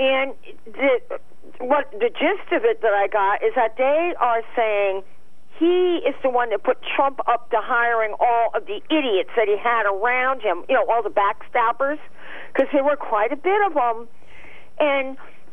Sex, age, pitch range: female, 50-69, 230-345 Hz